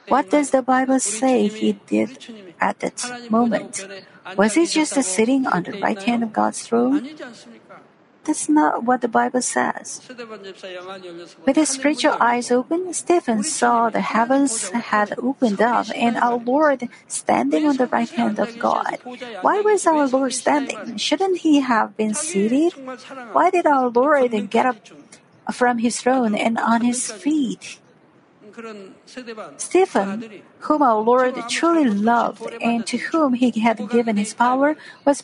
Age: 50-69